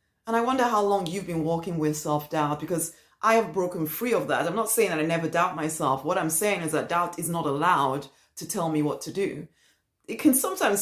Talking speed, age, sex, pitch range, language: 240 wpm, 30-49, female, 150-205 Hz, English